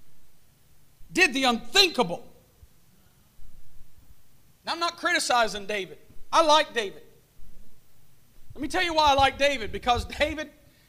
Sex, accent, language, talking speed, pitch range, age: male, American, English, 110 wpm, 225-320 Hz, 50-69